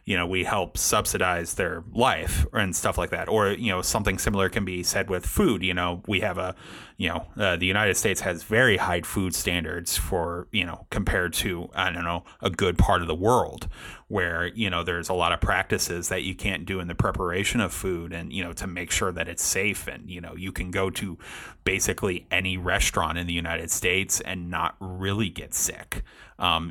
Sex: male